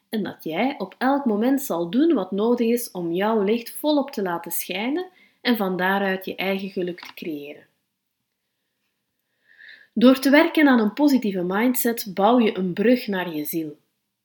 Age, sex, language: 30-49, female, Dutch